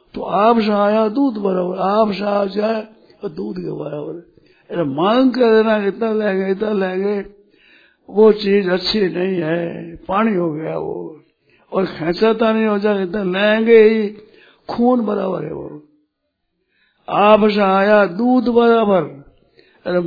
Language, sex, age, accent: Hindi, male, 60-79, native